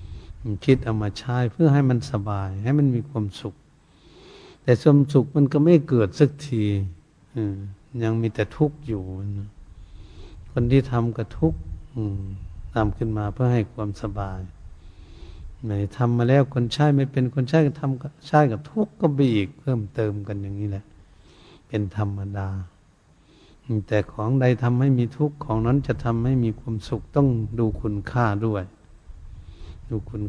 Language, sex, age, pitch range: Thai, male, 70-89, 100-125 Hz